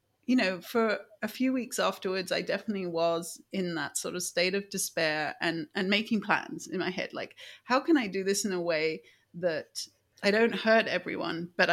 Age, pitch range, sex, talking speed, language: 40-59, 175-230 Hz, female, 200 wpm, English